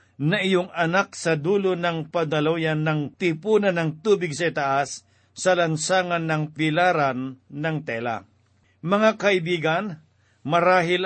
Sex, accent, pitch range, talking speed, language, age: male, native, 145-180 Hz, 120 wpm, Filipino, 60-79